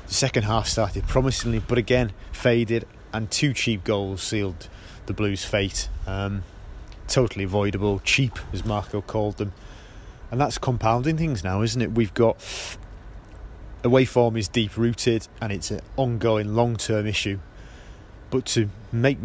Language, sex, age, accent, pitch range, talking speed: English, male, 30-49, British, 100-115 Hz, 140 wpm